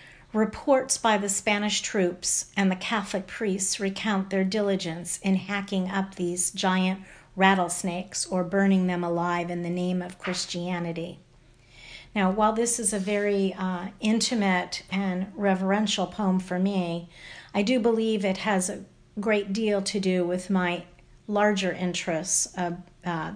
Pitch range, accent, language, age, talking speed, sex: 180-215 Hz, American, English, 50-69, 145 wpm, female